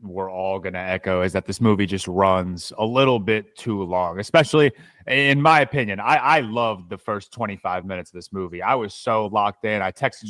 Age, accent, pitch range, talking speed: 30-49, American, 100-120 Hz, 210 wpm